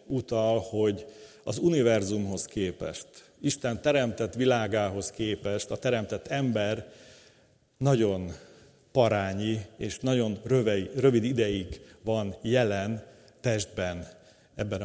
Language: Hungarian